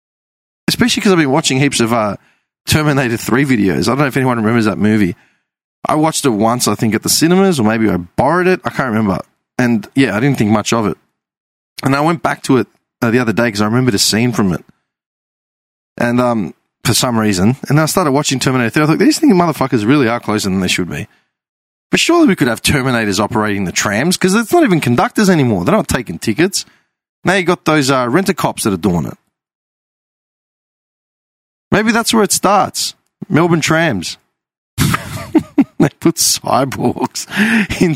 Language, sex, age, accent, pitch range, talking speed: English, male, 20-39, Australian, 110-175 Hz, 195 wpm